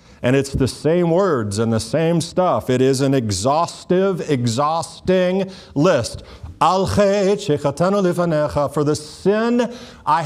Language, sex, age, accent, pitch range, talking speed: English, male, 50-69, American, 135-200 Hz, 125 wpm